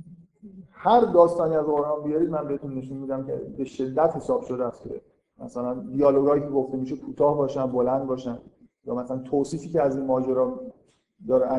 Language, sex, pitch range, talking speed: Persian, male, 135-170 Hz, 165 wpm